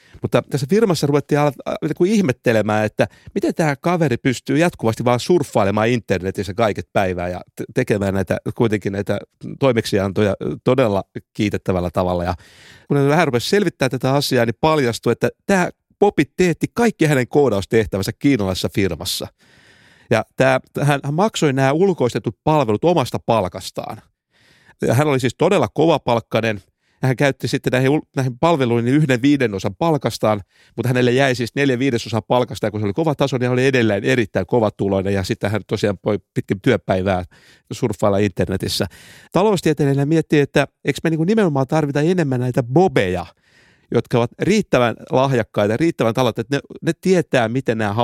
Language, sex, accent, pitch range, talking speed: Finnish, male, native, 105-145 Hz, 150 wpm